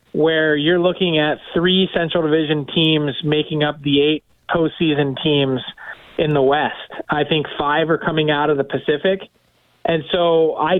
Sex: male